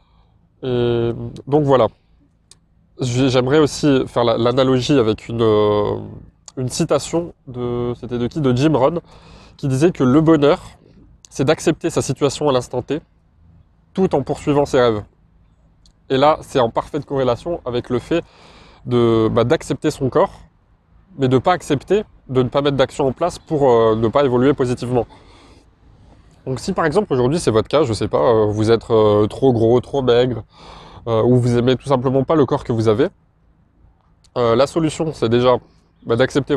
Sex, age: male, 20-39